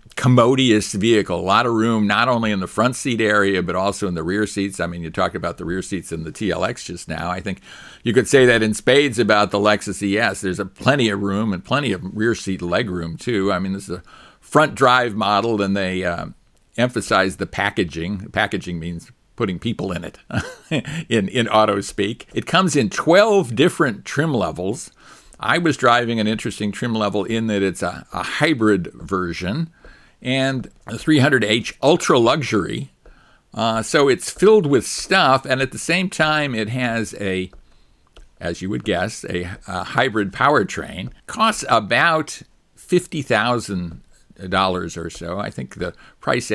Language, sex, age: English, male, 50-69